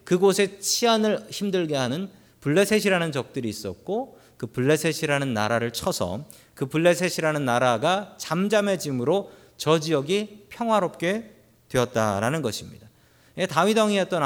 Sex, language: male, Korean